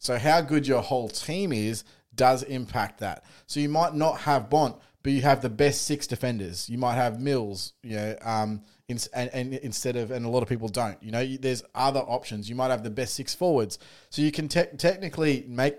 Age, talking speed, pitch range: 20-39, 230 wpm, 115-135 Hz